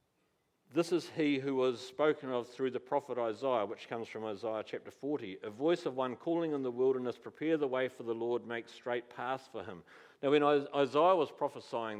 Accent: Australian